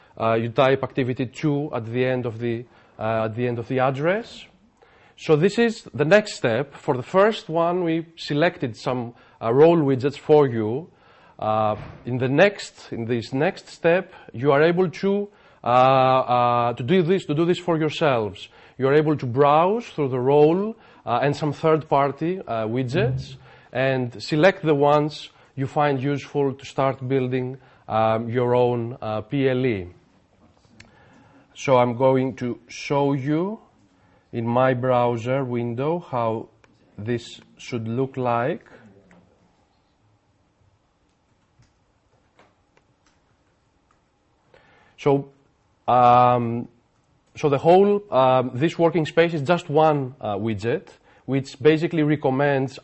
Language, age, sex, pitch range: English, 40-59, male, 120-150 Hz